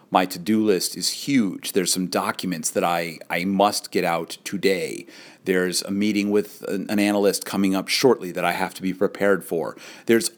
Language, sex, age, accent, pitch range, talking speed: English, male, 40-59, American, 95-115 Hz, 185 wpm